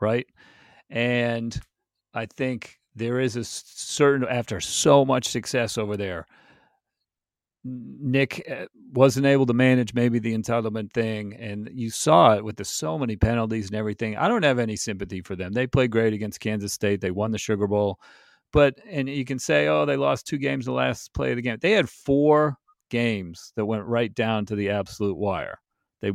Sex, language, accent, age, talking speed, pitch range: male, English, American, 40-59, 185 wpm, 105-130 Hz